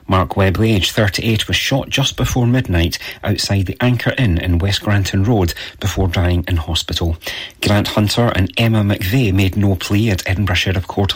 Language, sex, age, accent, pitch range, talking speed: English, male, 40-59, British, 90-115 Hz, 180 wpm